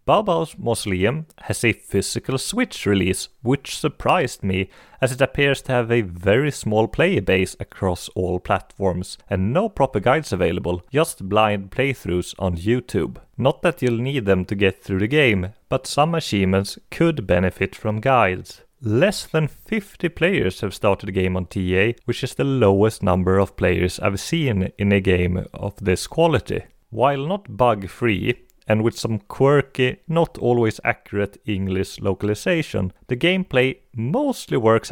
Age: 30-49